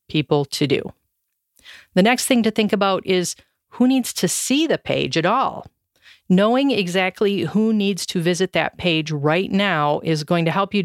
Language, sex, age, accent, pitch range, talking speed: English, female, 40-59, American, 165-215 Hz, 185 wpm